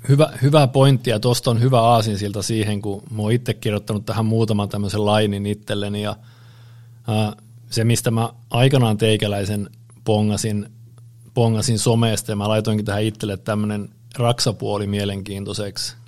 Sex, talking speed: male, 140 wpm